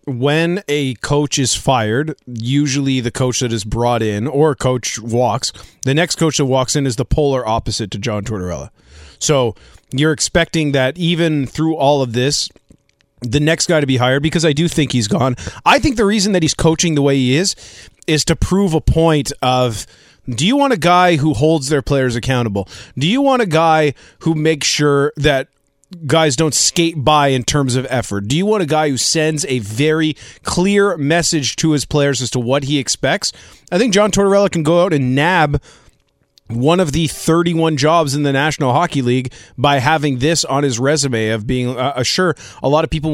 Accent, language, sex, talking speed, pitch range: American, English, male, 200 wpm, 125-160 Hz